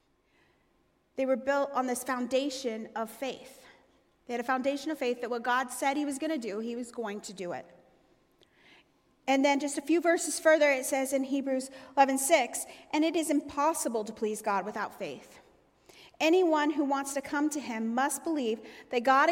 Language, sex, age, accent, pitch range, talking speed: English, female, 30-49, American, 245-290 Hz, 195 wpm